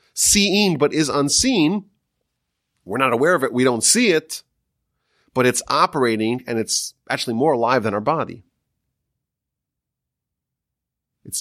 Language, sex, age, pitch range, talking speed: English, male, 30-49, 110-165 Hz, 130 wpm